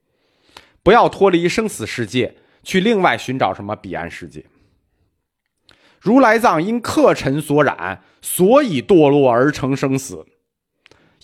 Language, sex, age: Chinese, male, 30-49